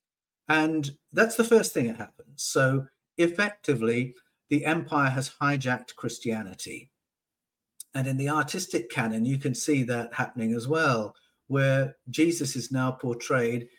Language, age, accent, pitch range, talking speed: English, 50-69, British, 120-150 Hz, 135 wpm